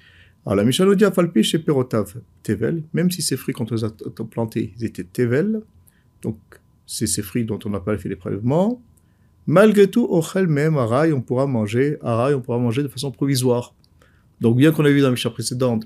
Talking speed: 195 wpm